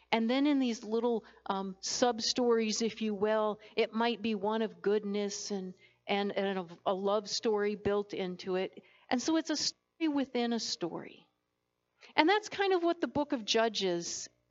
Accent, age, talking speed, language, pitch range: American, 50-69, 180 wpm, English, 210-250 Hz